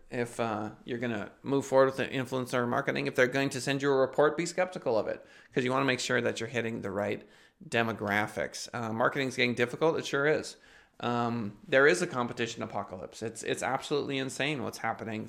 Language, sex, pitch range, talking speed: English, male, 110-135 Hz, 215 wpm